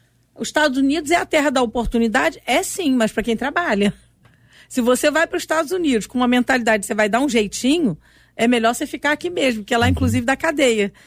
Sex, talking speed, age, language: female, 220 wpm, 50-69, Portuguese